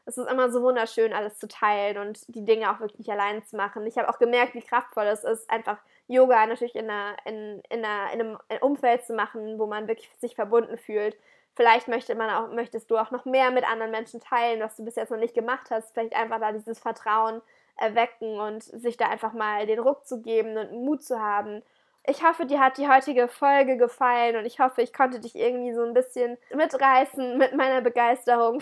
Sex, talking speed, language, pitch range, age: female, 210 wpm, English, 220-250 Hz, 20-39